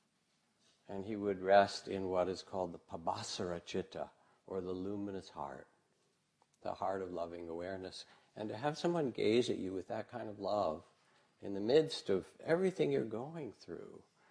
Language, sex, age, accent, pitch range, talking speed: English, male, 60-79, American, 95-115 Hz, 170 wpm